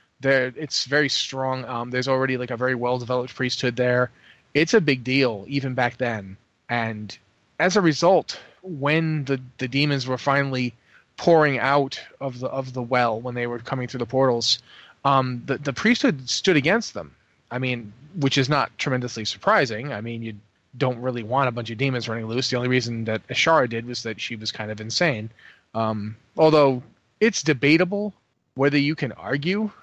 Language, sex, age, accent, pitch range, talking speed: English, male, 30-49, American, 120-150 Hz, 185 wpm